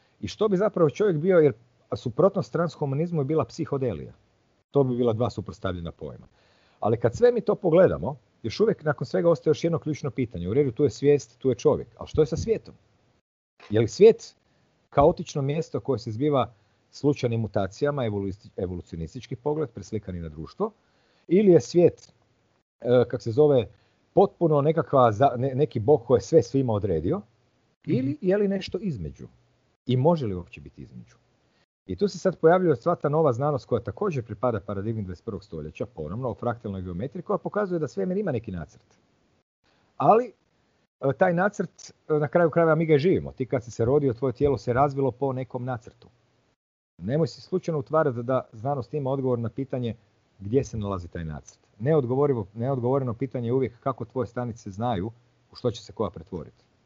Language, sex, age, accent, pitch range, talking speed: Croatian, male, 40-59, native, 110-155 Hz, 175 wpm